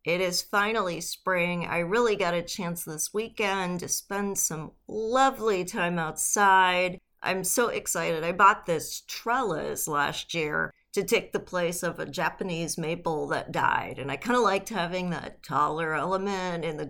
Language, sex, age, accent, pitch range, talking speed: English, female, 40-59, American, 170-215 Hz, 165 wpm